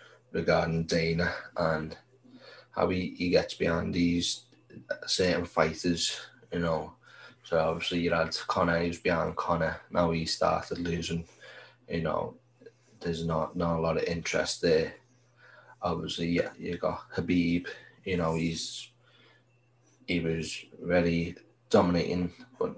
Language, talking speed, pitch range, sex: English, 130 wpm, 80-100 Hz, male